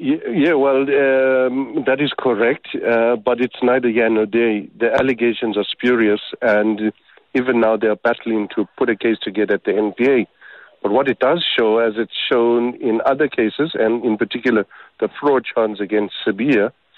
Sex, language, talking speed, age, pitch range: male, English, 175 wpm, 50-69, 110-130 Hz